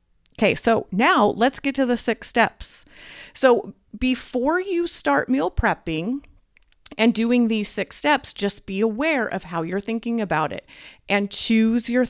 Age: 30-49